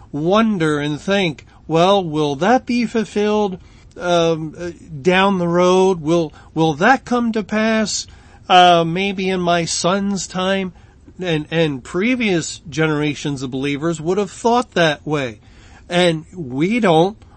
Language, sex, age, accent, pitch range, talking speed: English, male, 40-59, American, 145-190 Hz, 130 wpm